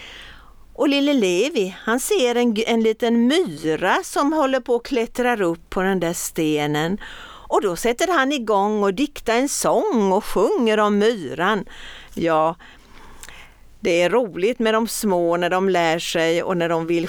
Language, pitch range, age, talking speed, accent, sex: Swedish, 180-240 Hz, 50-69, 165 wpm, native, female